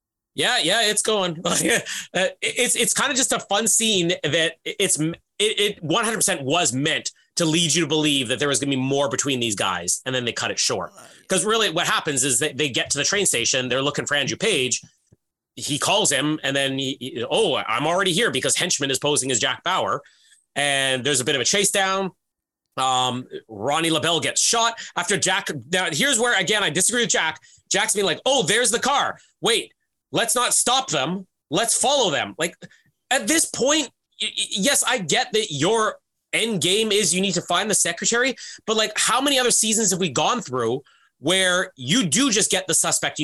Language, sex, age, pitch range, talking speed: English, male, 30-49, 150-225 Hz, 210 wpm